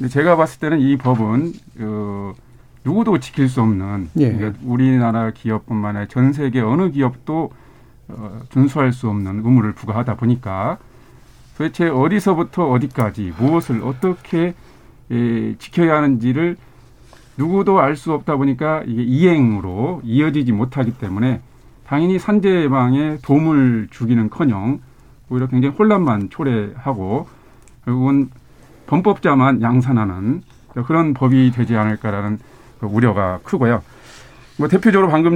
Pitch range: 115-145 Hz